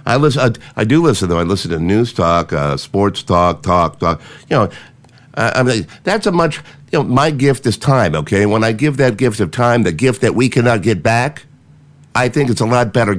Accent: American